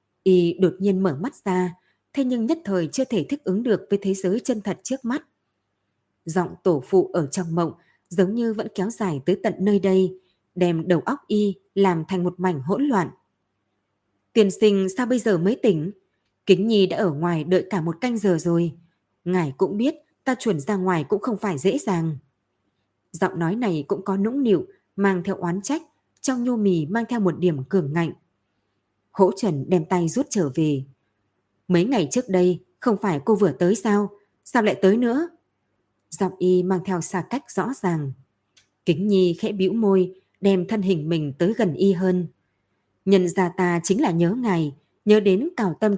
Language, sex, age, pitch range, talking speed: Vietnamese, female, 20-39, 170-210 Hz, 195 wpm